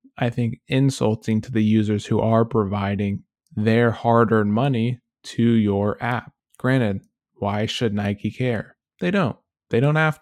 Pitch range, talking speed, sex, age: 110-130 Hz, 145 wpm, male, 20-39